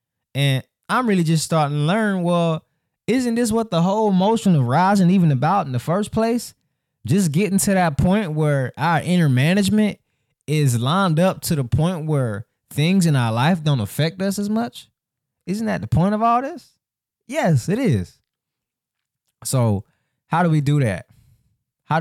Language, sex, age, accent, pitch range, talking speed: English, male, 20-39, American, 115-155 Hz, 175 wpm